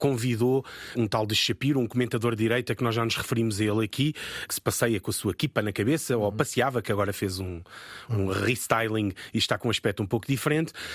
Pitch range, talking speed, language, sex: 115-140 Hz, 230 wpm, Portuguese, male